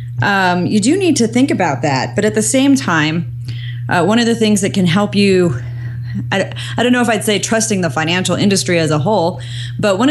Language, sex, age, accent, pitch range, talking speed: English, female, 30-49, American, 135-205 Hz, 225 wpm